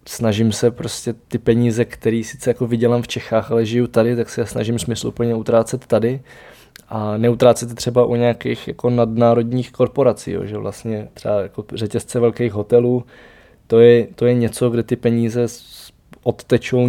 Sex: male